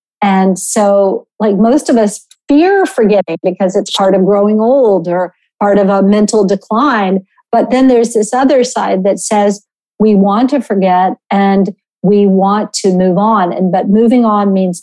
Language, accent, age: English, American, 50-69